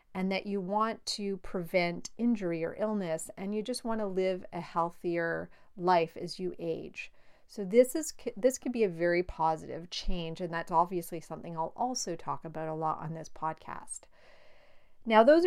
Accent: American